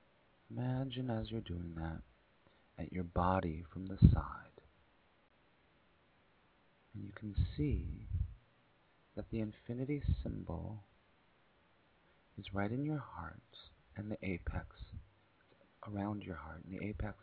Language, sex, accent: English, male, American